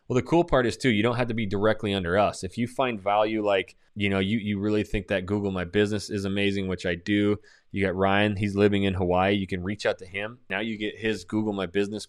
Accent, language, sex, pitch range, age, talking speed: American, English, male, 95-110 Hz, 20-39, 270 wpm